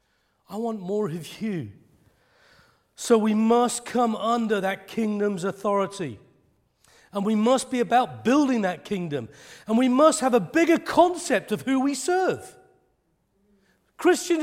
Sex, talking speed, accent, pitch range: male, 135 wpm, British, 155-235 Hz